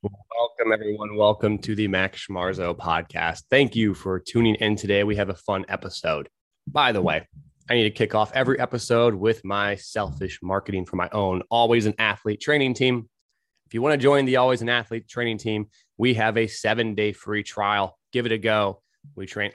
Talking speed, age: 200 wpm, 20-39